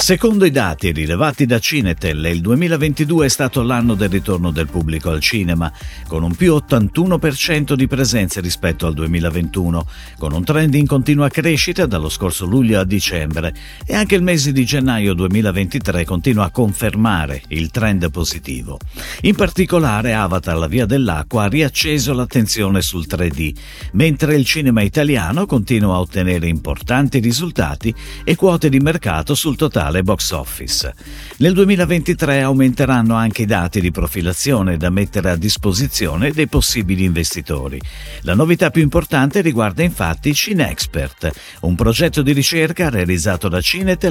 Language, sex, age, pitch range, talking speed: Italian, male, 50-69, 85-145 Hz, 145 wpm